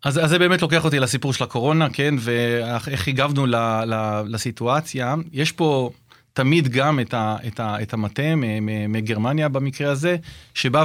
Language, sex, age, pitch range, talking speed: Hebrew, male, 30-49, 120-160 Hz, 150 wpm